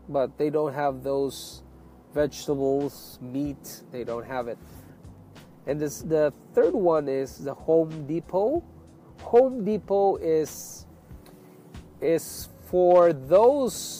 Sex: male